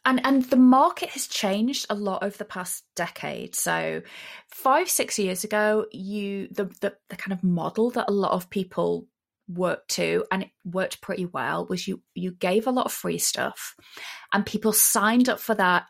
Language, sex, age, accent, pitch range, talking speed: English, female, 30-49, British, 190-255 Hz, 195 wpm